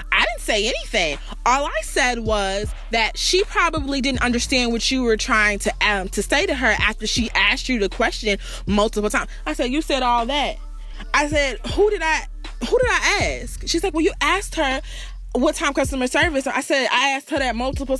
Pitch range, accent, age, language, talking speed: 225-310 Hz, American, 20-39, English, 210 wpm